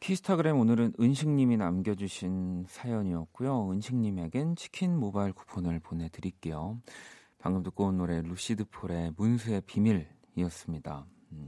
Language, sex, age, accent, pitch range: Korean, male, 40-59, native, 90-125 Hz